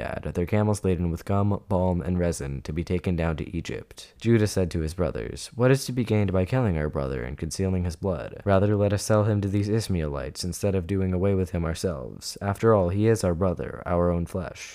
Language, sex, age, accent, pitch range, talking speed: English, male, 20-39, American, 85-105 Hz, 230 wpm